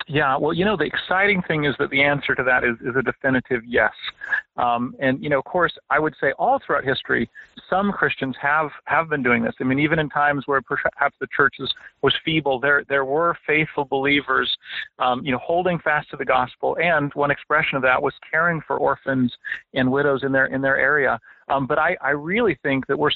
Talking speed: 220 wpm